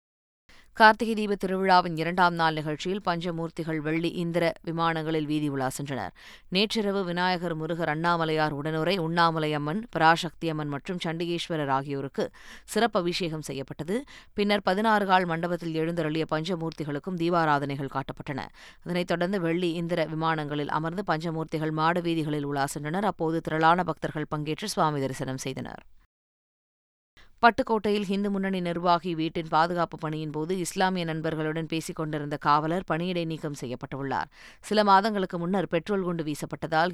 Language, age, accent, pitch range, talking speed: Tamil, 20-39, native, 155-180 Hz, 110 wpm